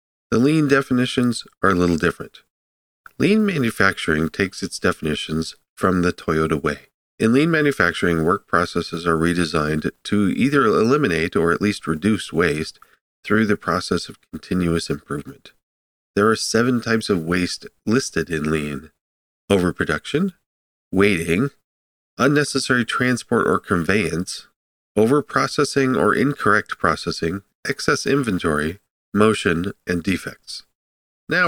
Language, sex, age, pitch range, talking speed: English, male, 40-59, 80-115 Hz, 120 wpm